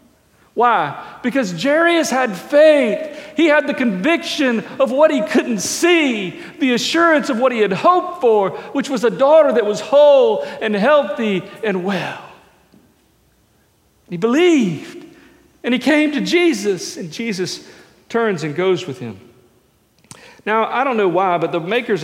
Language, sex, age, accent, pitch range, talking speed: English, male, 50-69, American, 205-290 Hz, 150 wpm